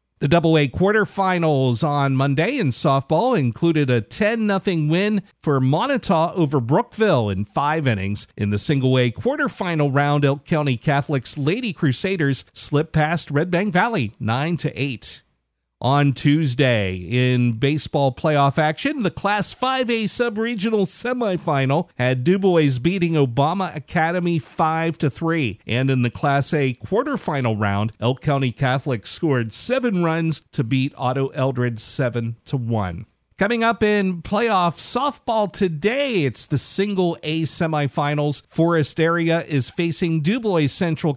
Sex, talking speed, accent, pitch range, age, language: male, 135 wpm, American, 130-175 Hz, 50-69, English